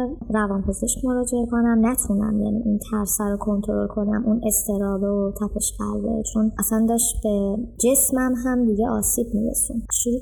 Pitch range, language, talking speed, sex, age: 220-260 Hz, Persian, 160 wpm, male, 20-39